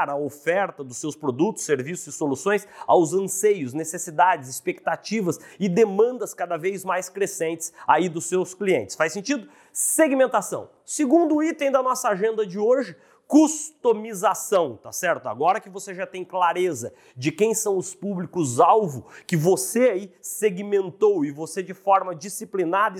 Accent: Brazilian